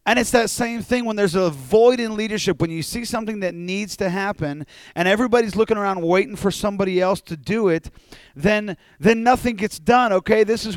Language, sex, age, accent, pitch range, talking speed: English, male, 40-59, American, 165-215 Hz, 210 wpm